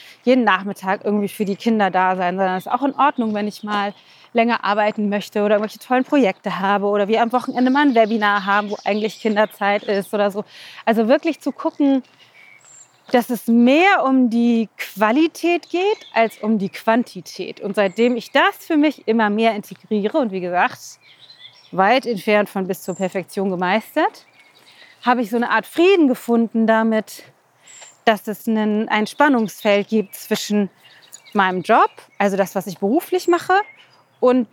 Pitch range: 205-265 Hz